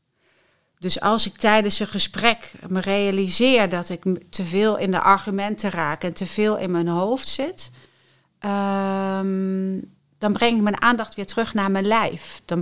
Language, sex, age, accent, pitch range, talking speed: Dutch, female, 40-59, Dutch, 170-205 Hz, 160 wpm